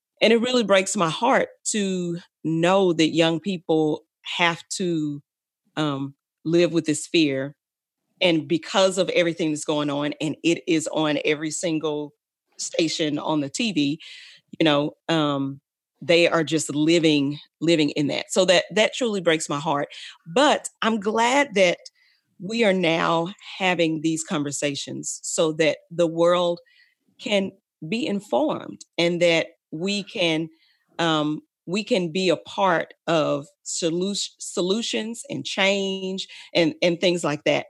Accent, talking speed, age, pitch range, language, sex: American, 140 wpm, 40-59, 150-190 Hz, English, female